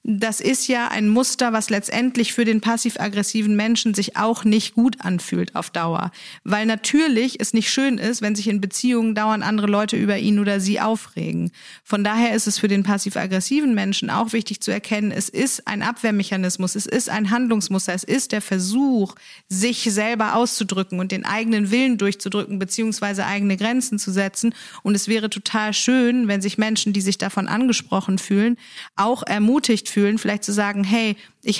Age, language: 40-59, German